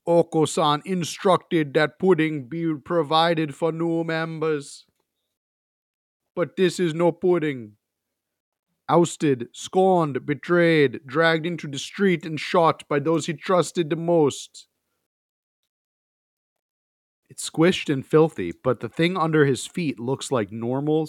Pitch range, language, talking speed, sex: 125-170 Hz, English, 120 wpm, male